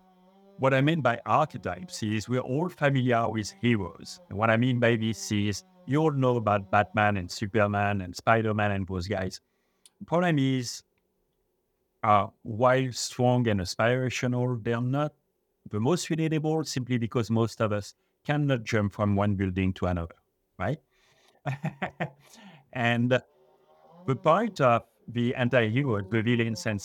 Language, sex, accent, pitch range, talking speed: English, male, French, 105-140 Hz, 140 wpm